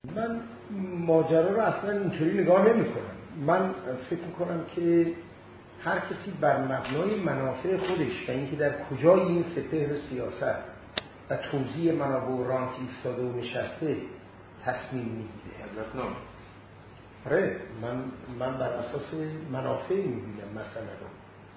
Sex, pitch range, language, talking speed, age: male, 115-155 Hz, Persian, 130 wpm, 40-59